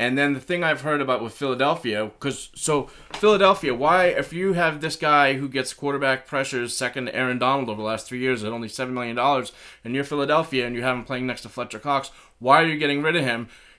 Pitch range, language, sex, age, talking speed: 120-140 Hz, English, male, 20-39, 235 wpm